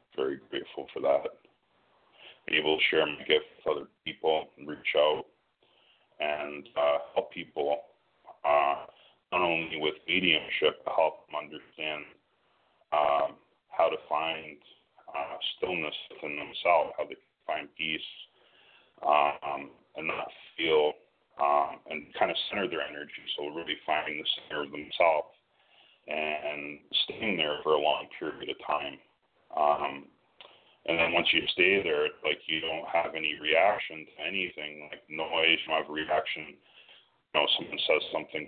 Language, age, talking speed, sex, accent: English, 40-59, 150 wpm, male, American